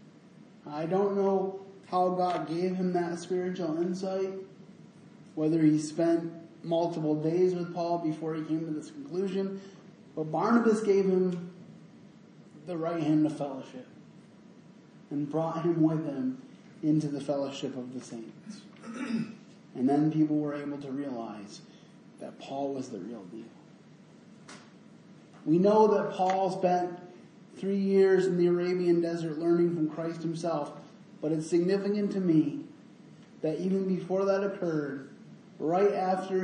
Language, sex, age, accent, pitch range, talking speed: English, male, 20-39, American, 155-195 Hz, 135 wpm